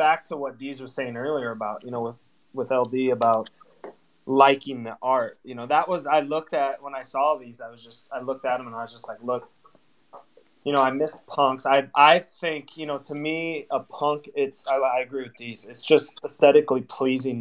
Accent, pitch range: American, 115-140 Hz